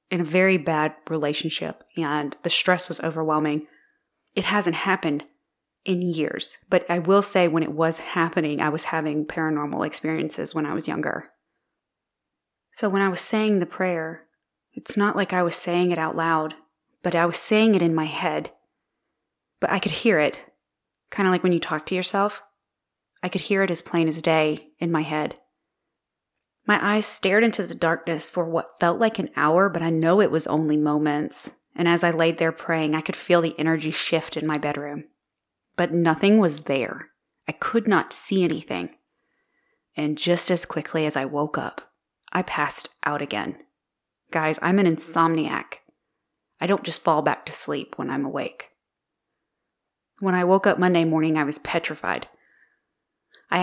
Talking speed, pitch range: 180 wpm, 155-185 Hz